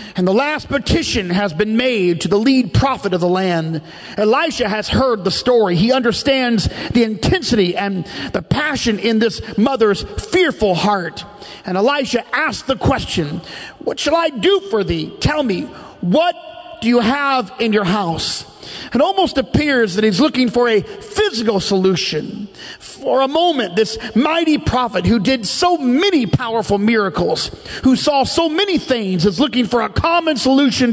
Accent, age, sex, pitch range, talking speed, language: American, 40-59, male, 210-285 Hz, 165 wpm, English